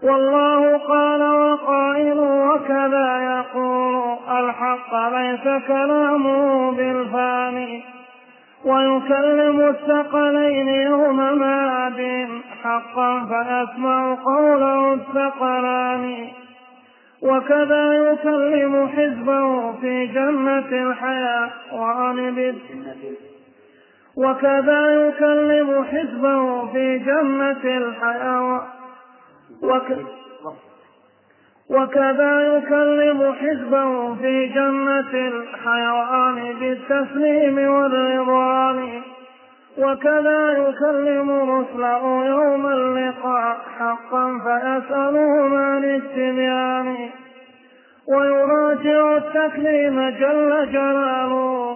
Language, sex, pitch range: Arabic, male, 250-280 Hz